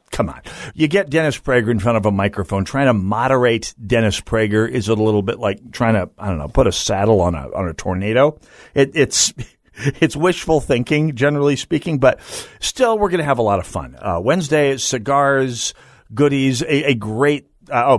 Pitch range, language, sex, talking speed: 105-145 Hz, English, male, 200 wpm